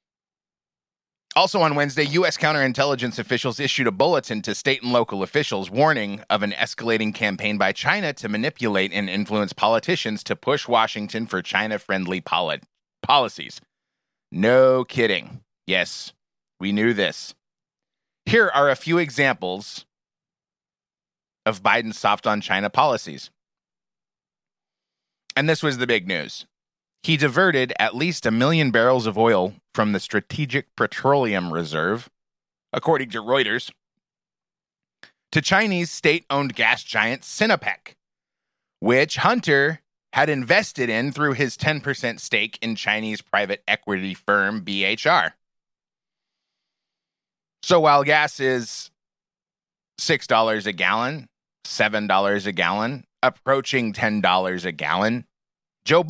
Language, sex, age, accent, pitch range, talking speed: English, male, 30-49, American, 105-150 Hz, 115 wpm